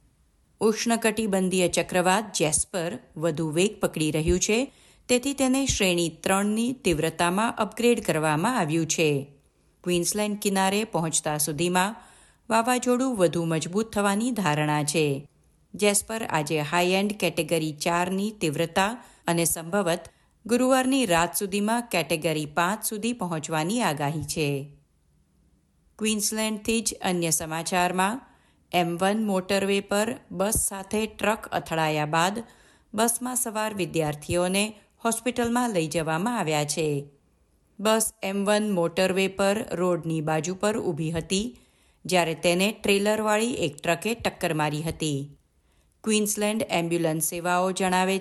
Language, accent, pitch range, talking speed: Gujarati, native, 165-215 Hz, 105 wpm